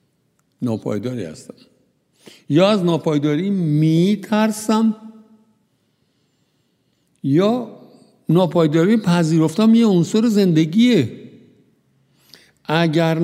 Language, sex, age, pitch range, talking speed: Persian, male, 60-79, 130-180 Hz, 60 wpm